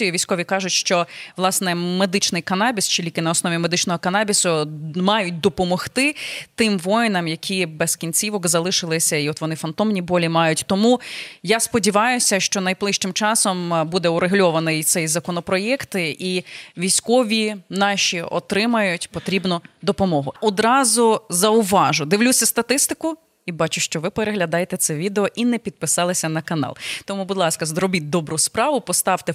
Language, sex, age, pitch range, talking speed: Ukrainian, female, 20-39, 175-220 Hz, 135 wpm